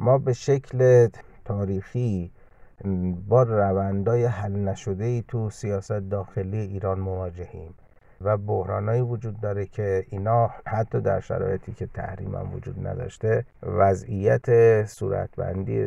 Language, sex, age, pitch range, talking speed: Persian, male, 50-69, 95-115 Hz, 110 wpm